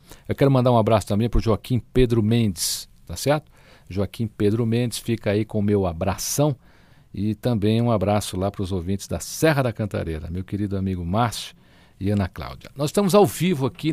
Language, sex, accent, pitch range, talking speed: Portuguese, male, Brazilian, 105-140 Hz, 200 wpm